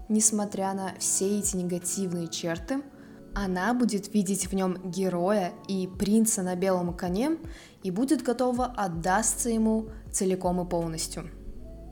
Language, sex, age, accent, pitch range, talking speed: Russian, female, 20-39, native, 185-225 Hz, 125 wpm